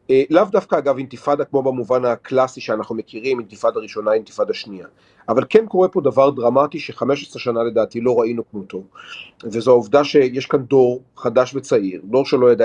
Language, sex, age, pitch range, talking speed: Hebrew, male, 40-59, 120-150 Hz, 170 wpm